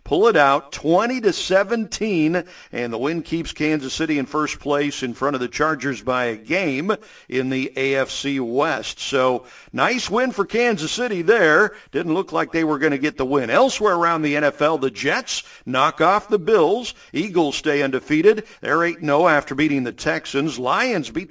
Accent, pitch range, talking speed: American, 140-185 Hz, 180 wpm